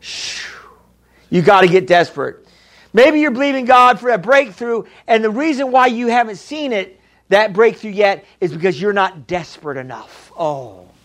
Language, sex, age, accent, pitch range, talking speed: English, male, 50-69, American, 195-265 Hz, 165 wpm